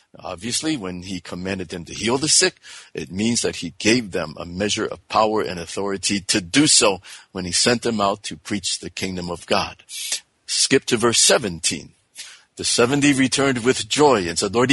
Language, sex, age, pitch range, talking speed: English, male, 50-69, 95-130 Hz, 190 wpm